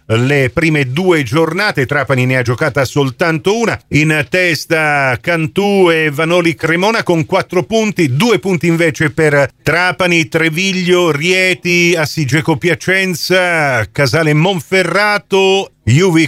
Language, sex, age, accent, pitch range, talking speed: Italian, male, 50-69, native, 140-180 Hz, 115 wpm